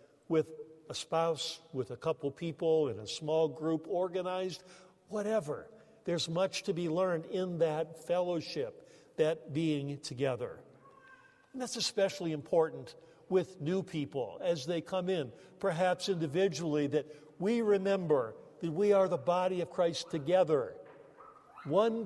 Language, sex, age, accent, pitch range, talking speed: English, male, 50-69, American, 150-205 Hz, 135 wpm